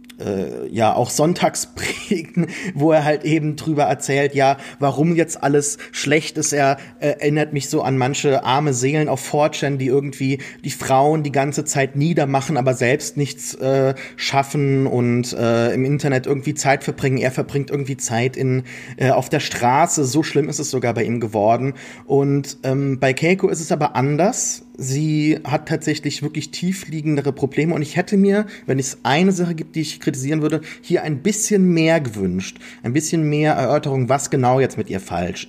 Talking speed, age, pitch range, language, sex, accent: 180 wpm, 30-49, 130-155 Hz, German, male, German